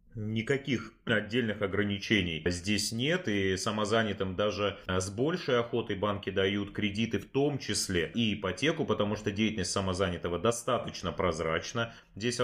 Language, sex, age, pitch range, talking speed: Russian, male, 30-49, 95-115 Hz, 125 wpm